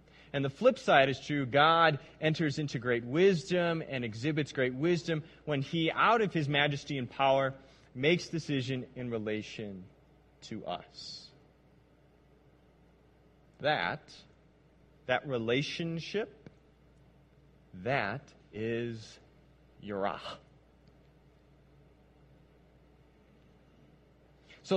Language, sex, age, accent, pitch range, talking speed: English, male, 30-49, American, 130-170 Hz, 85 wpm